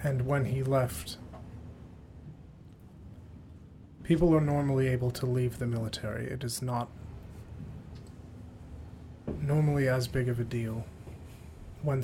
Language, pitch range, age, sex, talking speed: English, 100-130 Hz, 30-49, male, 110 wpm